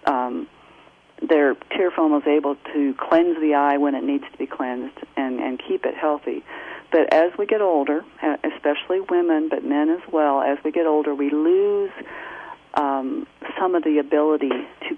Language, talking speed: English, 175 wpm